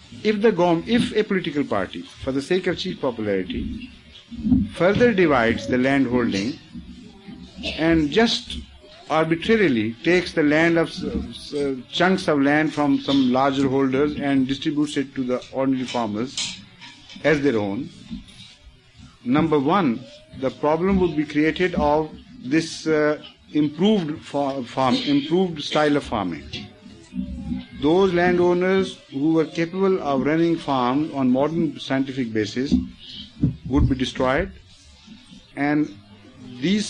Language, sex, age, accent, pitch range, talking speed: English, male, 50-69, Indian, 130-175 Hz, 125 wpm